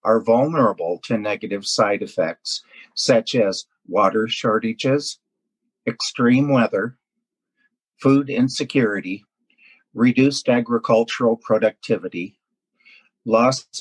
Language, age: English, 50-69